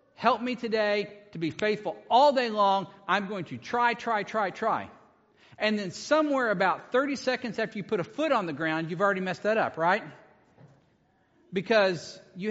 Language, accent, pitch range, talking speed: English, American, 160-215 Hz, 180 wpm